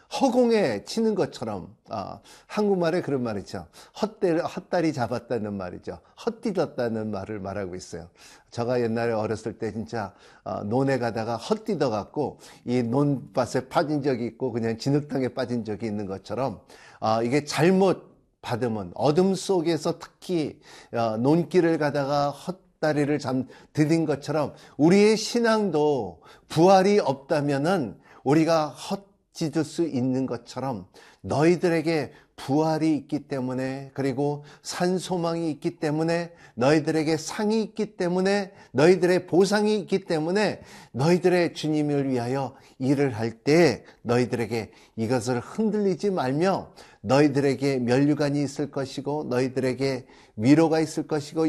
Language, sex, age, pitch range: Korean, male, 50-69, 130-170 Hz